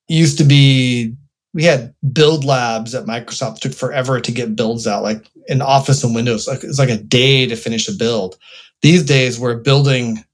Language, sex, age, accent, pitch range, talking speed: English, male, 30-49, American, 125-155 Hz, 195 wpm